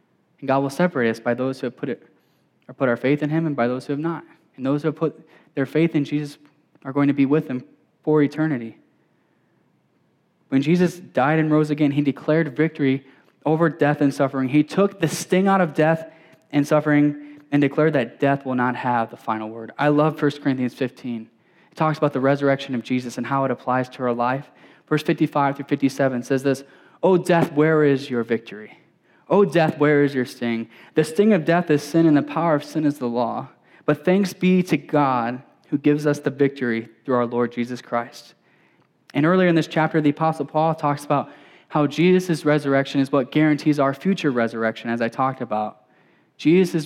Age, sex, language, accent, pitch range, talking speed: 10-29, male, English, American, 130-155 Hz, 205 wpm